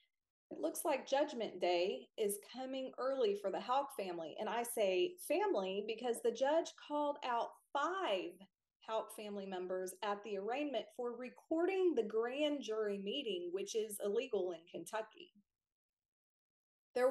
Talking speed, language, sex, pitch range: 140 wpm, English, female, 200-270 Hz